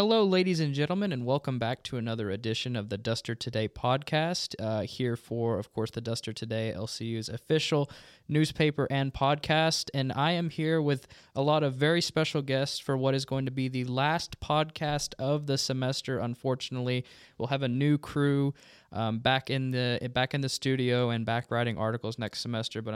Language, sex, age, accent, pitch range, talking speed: English, male, 20-39, American, 115-135 Hz, 190 wpm